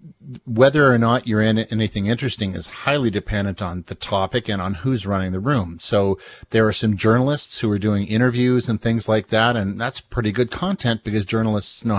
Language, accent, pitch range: English, American, 95-115 Hz